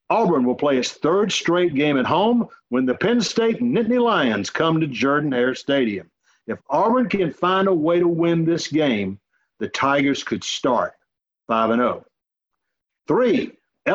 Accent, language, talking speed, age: American, English, 155 wpm, 50-69